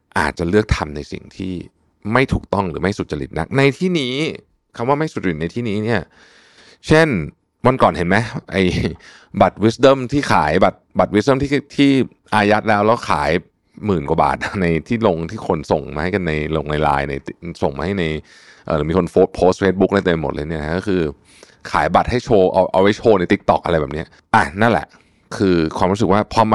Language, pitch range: Thai, 90-125 Hz